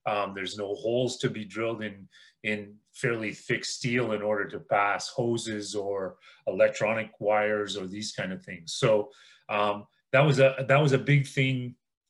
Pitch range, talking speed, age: 105-135 Hz, 175 wpm, 30-49